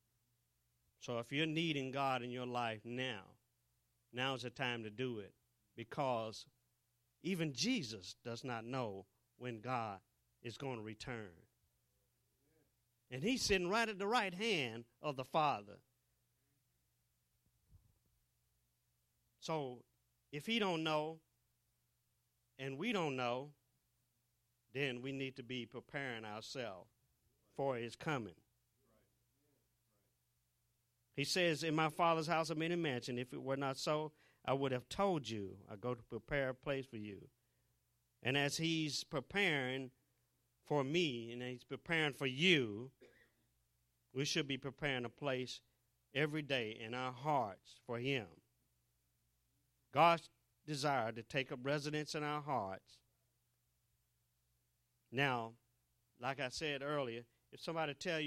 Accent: American